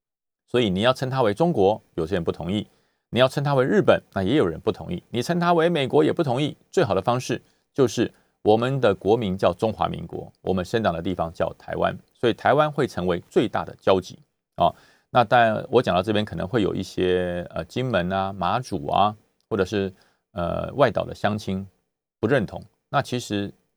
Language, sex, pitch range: Chinese, male, 95-130 Hz